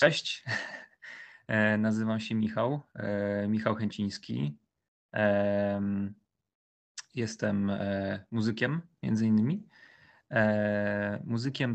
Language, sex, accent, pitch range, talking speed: English, male, Polish, 100-110 Hz, 55 wpm